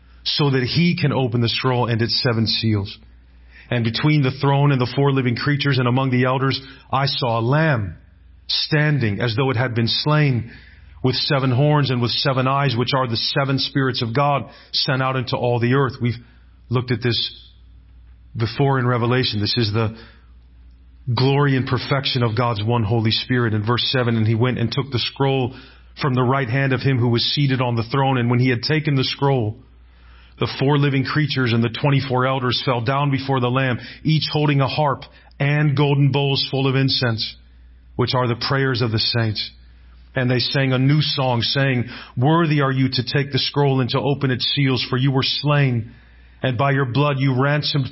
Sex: male